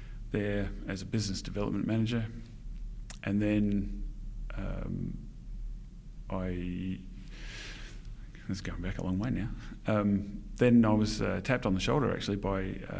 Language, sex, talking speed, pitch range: English, male, 135 wpm, 95-105 Hz